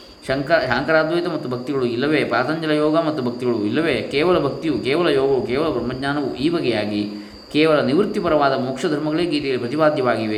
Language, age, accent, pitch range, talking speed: Kannada, 20-39, native, 120-155 Hz, 140 wpm